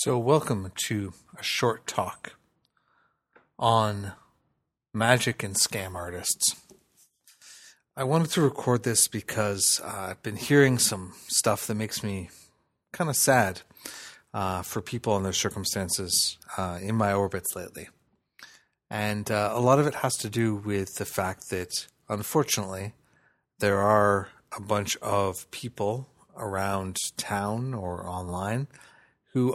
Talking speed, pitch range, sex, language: 130 wpm, 95-120 Hz, male, English